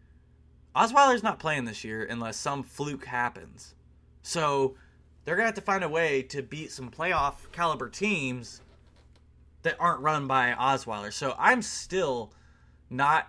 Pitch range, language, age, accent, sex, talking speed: 105-155 Hz, English, 20-39, American, male, 150 wpm